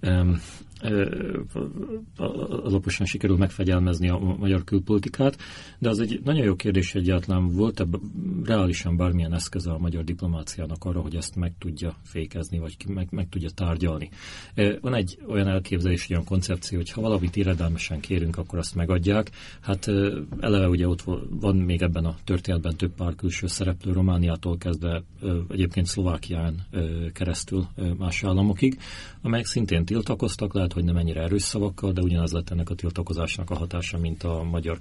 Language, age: Hungarian, 40-59